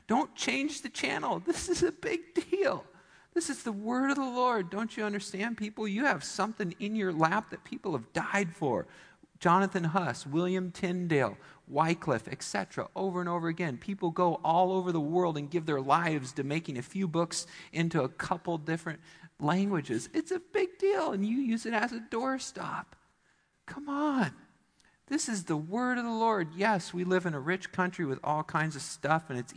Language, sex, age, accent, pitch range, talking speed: English, male, 50-69, American, 145-210 Hz, 195 wpm